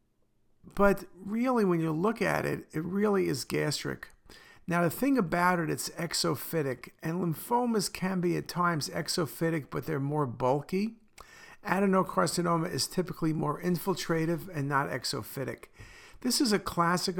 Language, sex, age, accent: English, male, 50-69, American